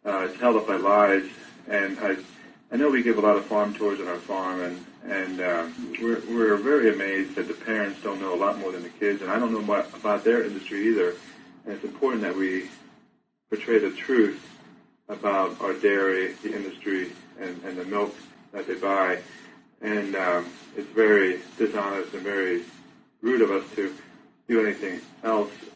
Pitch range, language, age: 90-115 Hz, English, 30-49